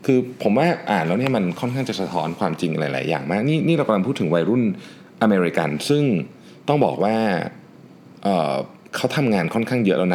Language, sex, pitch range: Thai, male, 80-125 Hz